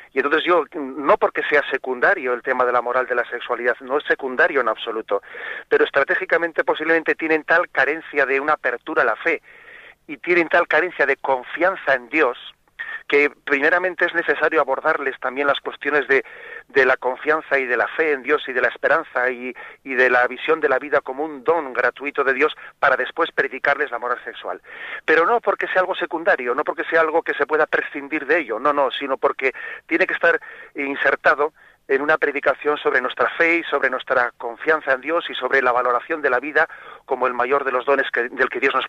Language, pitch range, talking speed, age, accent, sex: Spanish, 130-170 Hz, 210 wpm, 40-59, Spanish, male